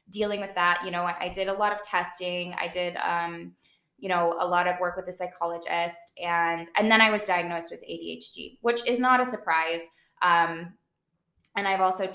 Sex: female